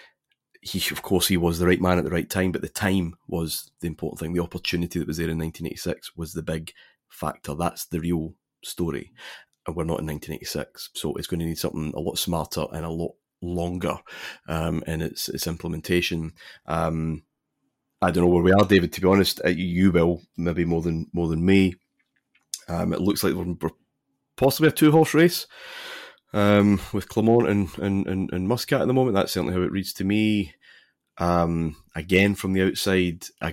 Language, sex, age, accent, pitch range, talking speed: English, male, 30-49, British, 85-100 Hz, 200 wpm